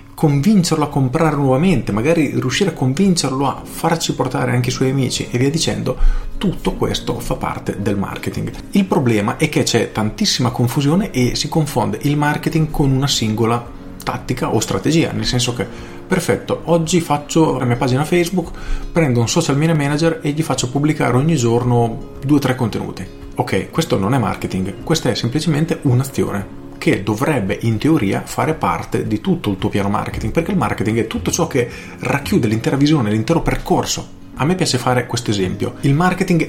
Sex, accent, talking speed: male, native, 180 wpm